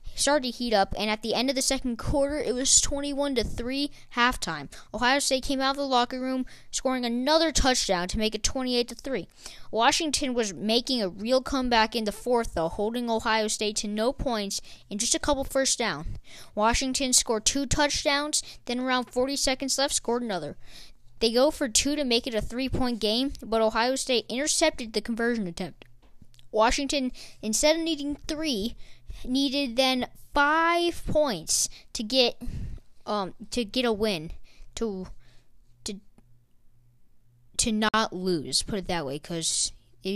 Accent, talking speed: American, 160 wpm